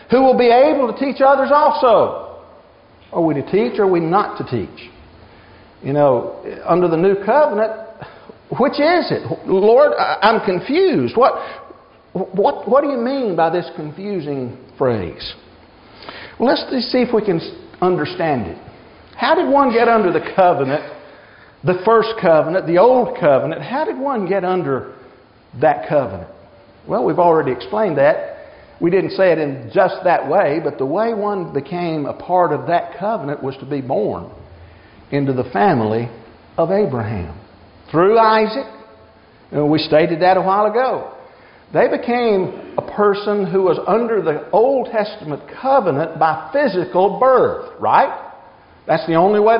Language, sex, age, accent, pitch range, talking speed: English, male, 50-69, American, 160-230 Hz, 150 wpm